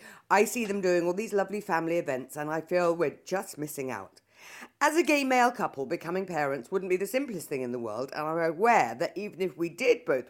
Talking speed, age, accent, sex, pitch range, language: 235 wpm, 50-69, British, female, 135-200 Hz, English